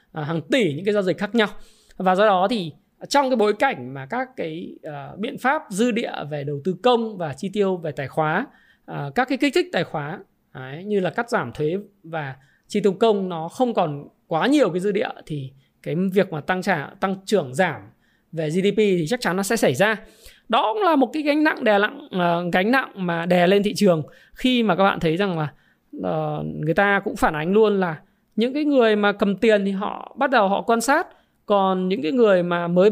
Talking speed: 220 wpm